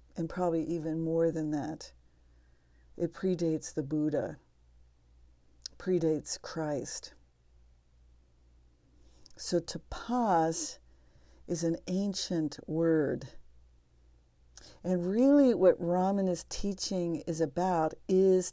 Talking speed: 85 wpm